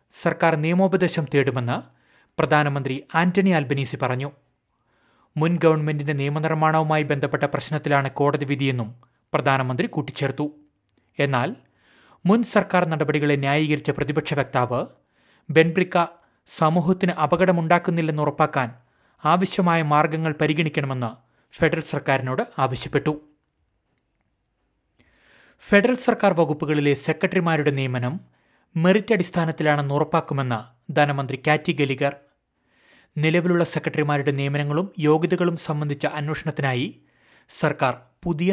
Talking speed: 80 wpm